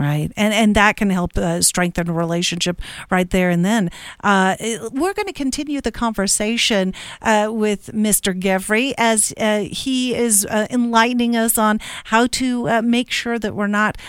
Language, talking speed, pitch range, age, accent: English, 175 wpm, 190-240 Hz, 50-69, American